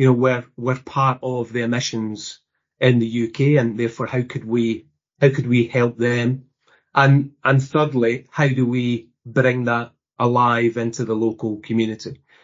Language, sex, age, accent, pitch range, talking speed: English, male, 40-59, British, 120-145 Hz, 165 wpm